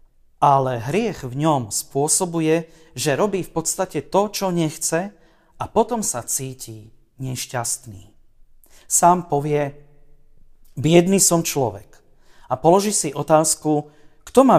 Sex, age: male, 40-59